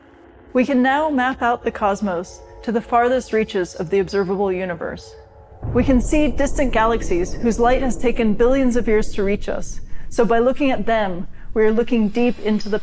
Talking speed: 190 wpm